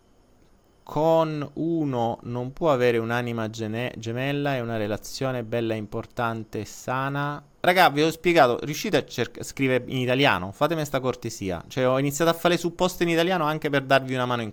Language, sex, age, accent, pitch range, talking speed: Italian, male, 30-49, native, 110-150 Hz, 175 wpm